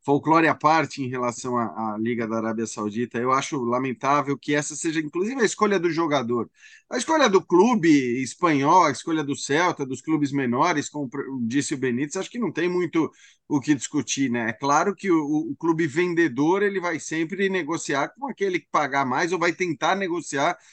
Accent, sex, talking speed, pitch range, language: Brazilian, male, 195 wpm, 145-190 Hz, Portuguese